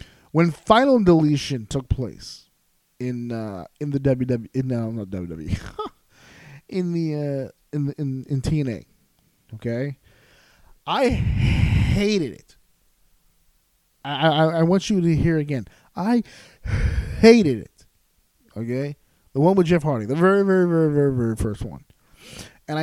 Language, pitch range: English, 120-170 Hz